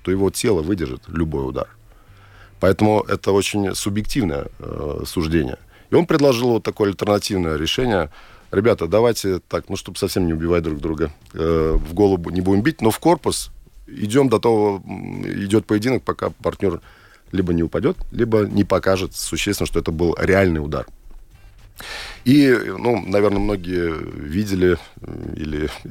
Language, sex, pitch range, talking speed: Russian, male, 85-105 Hz, 145 wpm